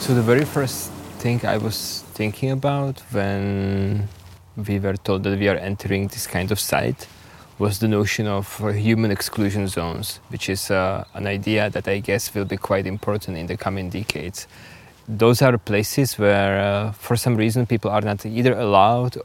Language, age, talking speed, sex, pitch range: English, 20-39, 180 wpm, male, 100-115 Hz